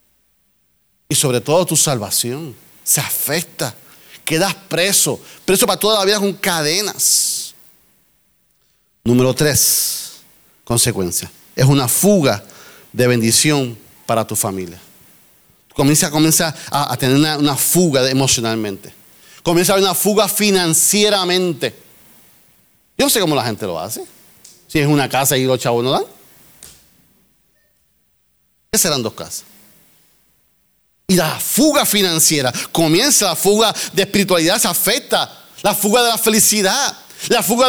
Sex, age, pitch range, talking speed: male, 40-59, 145-240 Hz, 130 wpm